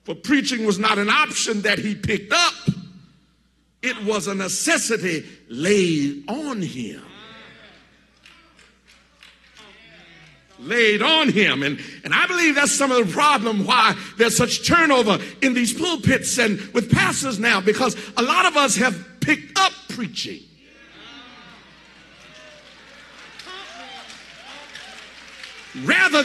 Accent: American